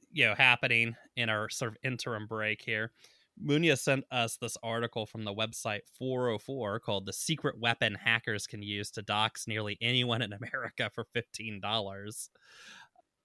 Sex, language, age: male, English, 20-39